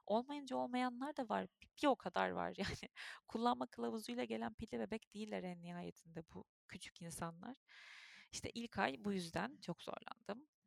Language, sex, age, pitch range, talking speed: Turkish, female, 30-49, 170-230 Hz, 150 wpm